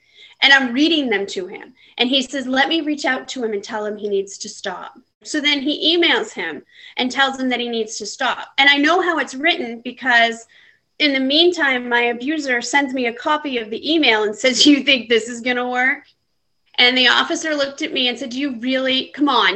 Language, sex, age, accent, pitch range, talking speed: English, female, 30-49, American, 220-275 Hz, 235 wpm